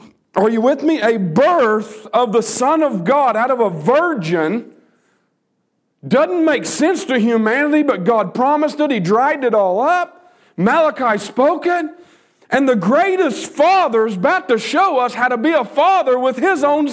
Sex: male